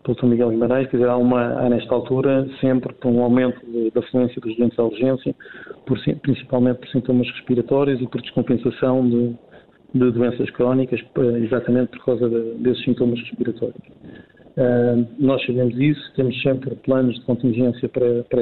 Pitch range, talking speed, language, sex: 125-145 Hz, 165 wpm, Portuguese, male